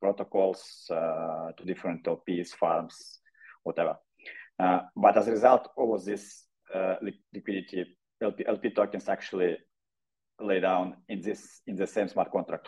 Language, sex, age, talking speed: English, male, 30-49, 140 wpm